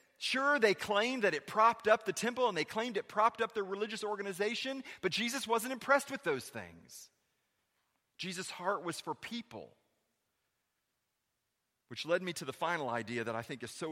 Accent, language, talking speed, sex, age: American, English, 180 wpm, male, 40-59